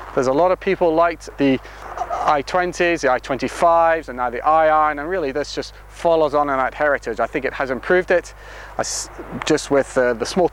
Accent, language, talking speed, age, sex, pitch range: British, English, 205 wpm, 30-49, male, 135-180 Hz